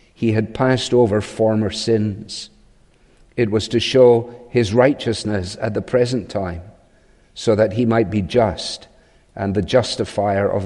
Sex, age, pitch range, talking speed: male, 50-69, 110-125 Hz, 145 wpm